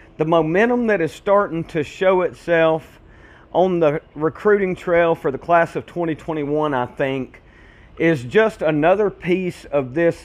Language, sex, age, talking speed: English, male, 40-59, 145 wpm